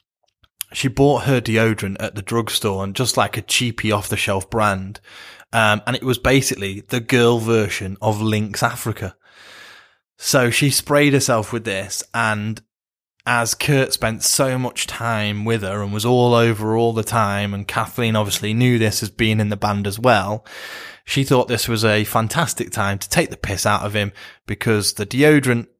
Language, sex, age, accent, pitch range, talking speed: English, male, 20-39, British, 105-125 Hz, 175 wpm